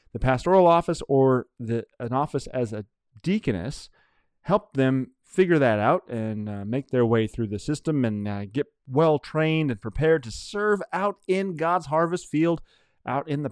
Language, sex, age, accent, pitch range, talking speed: English, male, 30-49, American, 110-150 Hz, 170 wpm